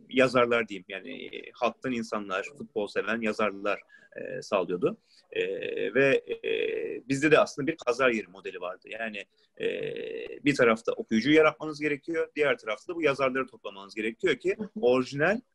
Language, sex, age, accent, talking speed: Turkish, male, 30-49, native, 145 wpm